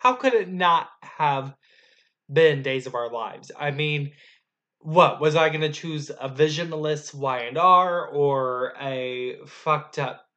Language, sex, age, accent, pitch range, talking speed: English, male, 20-39, American, 140-180 Hz, 145 wpm